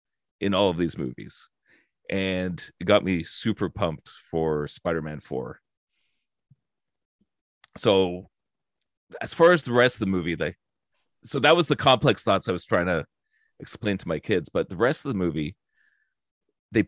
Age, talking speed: 30-49, 160 wpm